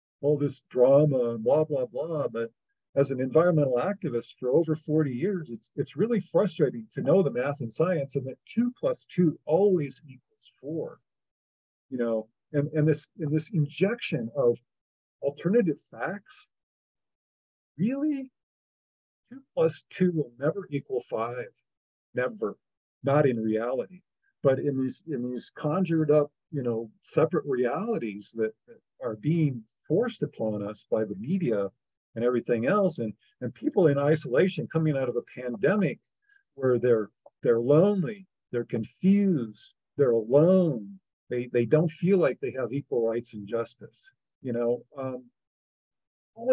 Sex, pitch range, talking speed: male, 120-175 Hz, 145 wpm